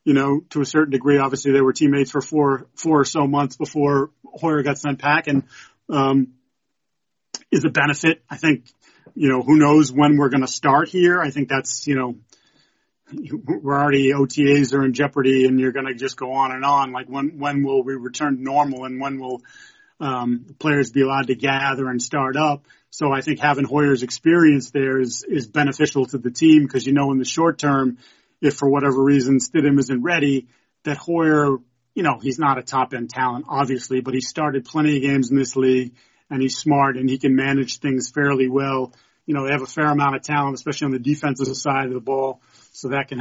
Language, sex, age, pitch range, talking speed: English, male, 30-49, 135-150 Hz, 215 wpm